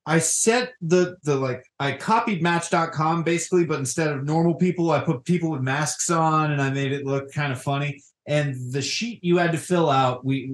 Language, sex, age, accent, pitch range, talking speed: English, male, 20-39, American, 135-175 Hz, 210 wpm